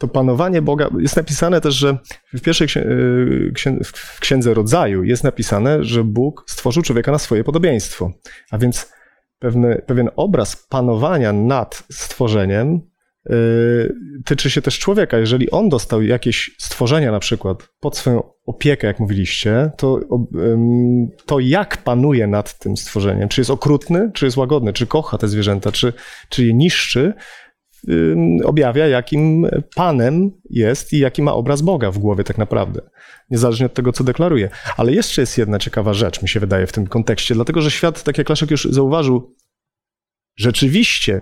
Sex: male